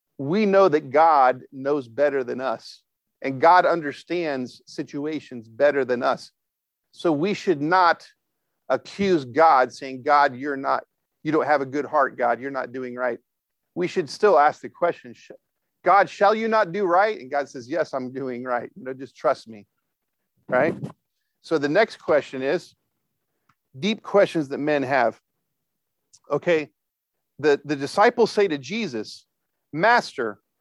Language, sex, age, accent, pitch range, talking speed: English, male, 50-69, American, 135-190 Hz, 155 wpm